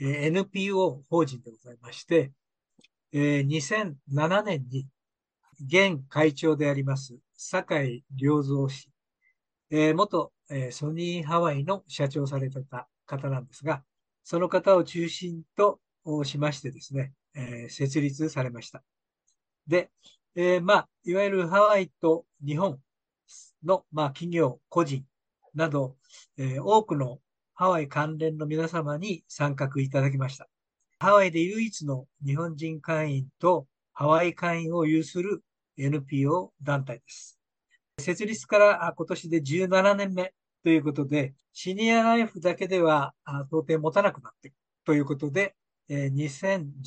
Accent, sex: native, male